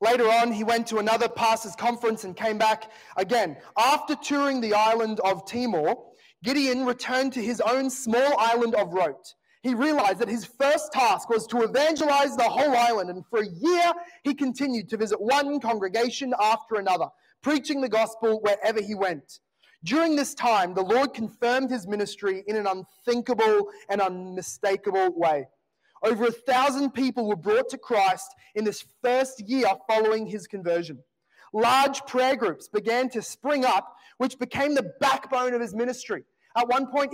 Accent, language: Australian, English